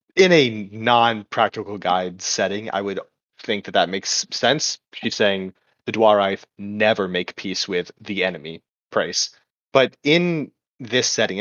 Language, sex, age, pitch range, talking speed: English, male, 30-49, 100-120 Hz, 140 wpm